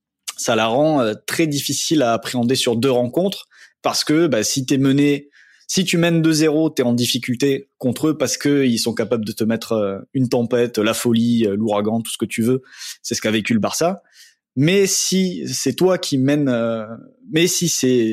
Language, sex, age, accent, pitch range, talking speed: French, male, 20-39, French, 115-150 Hz, 200 wpm